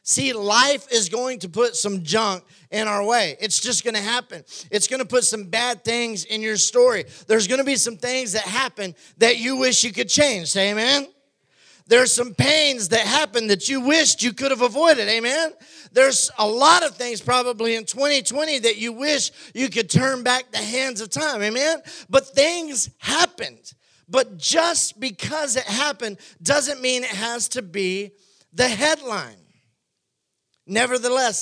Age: 40-59